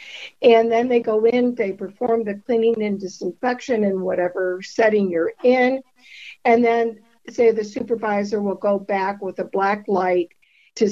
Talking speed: 160 wpm